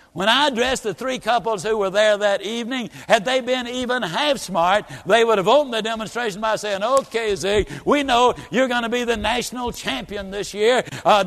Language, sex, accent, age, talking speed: English, male, American, 60-79, 210 wpm